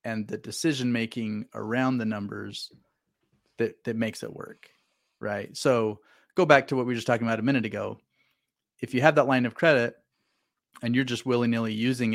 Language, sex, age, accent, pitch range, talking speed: English, male, 30-49, American, 110-125 Hz, 185 wpm